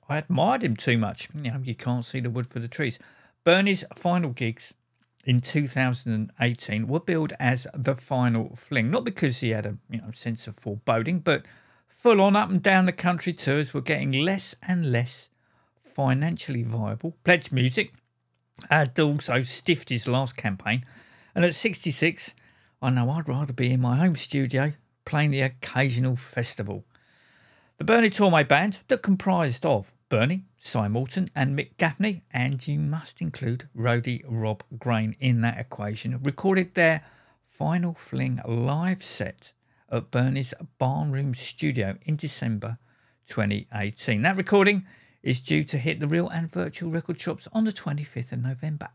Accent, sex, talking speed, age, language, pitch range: British, male, 155 wpm, 50-69, English, 120-175 Hz